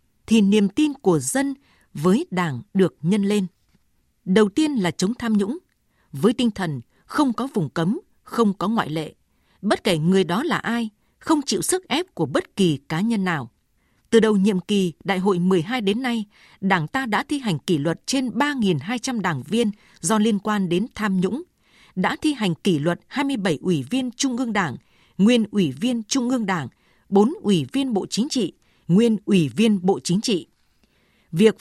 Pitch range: 185-235 Hz